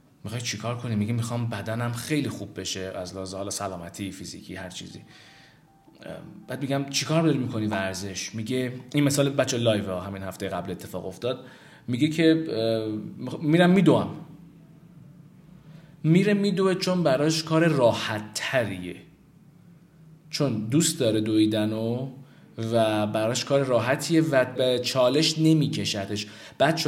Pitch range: 110-155 Hz